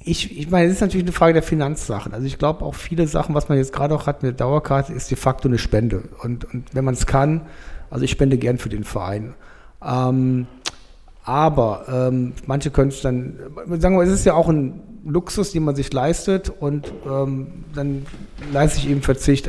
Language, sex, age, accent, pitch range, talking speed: German, male, 40-59, German, 125-150 Hz, 210 wpm